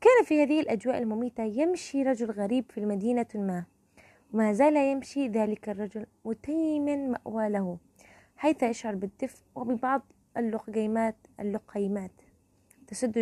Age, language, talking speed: 20-39, Arabic, 115 wpm